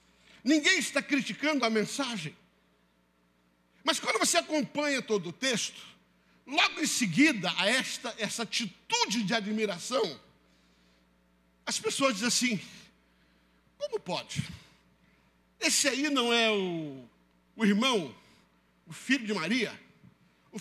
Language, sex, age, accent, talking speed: Portuguese, male, 50-69, Brazilian, 115 wpm